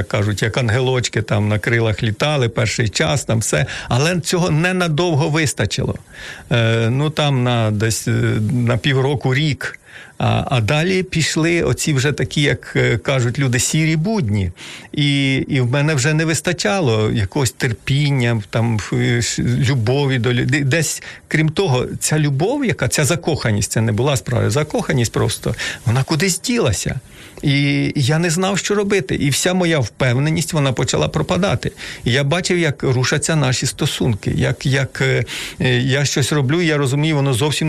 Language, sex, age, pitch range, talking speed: Ukrainian, male, 50-69, 125-155 Hz, 150 wpm